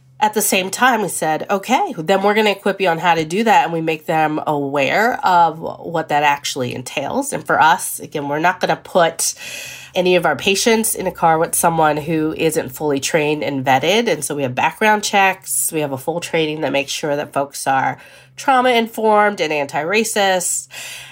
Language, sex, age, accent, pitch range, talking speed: English, female, 30-49, American, 150-200 Hz, 205 wpm